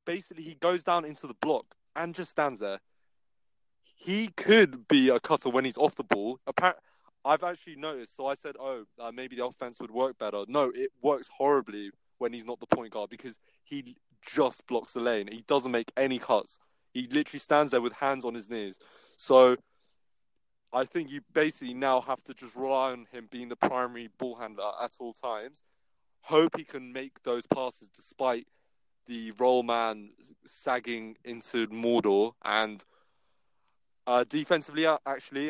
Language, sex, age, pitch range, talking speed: English, male, 20-39, 115-140 Hz, 170 wpm